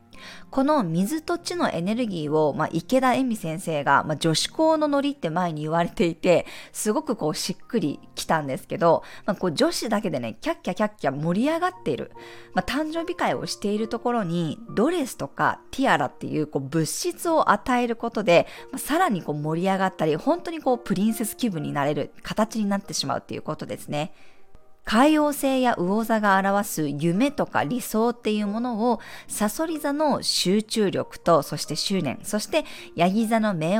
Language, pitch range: Japanese, 170-260 Hz